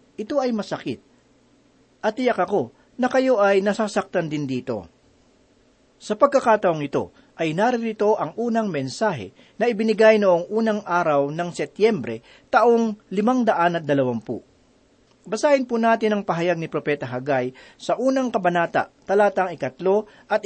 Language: Filipino